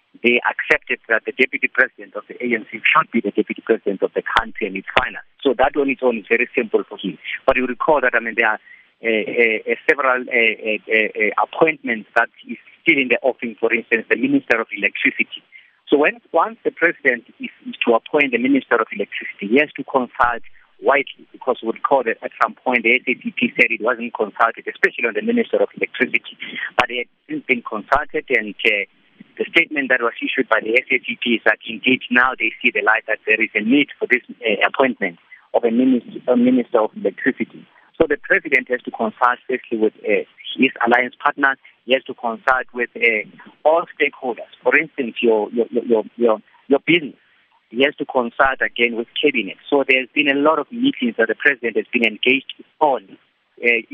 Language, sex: English, male